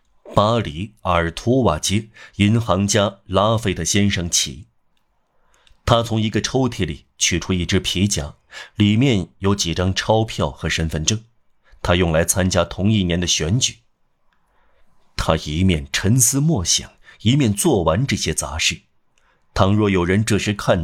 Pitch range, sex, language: 85-115 Hz, male, Chinese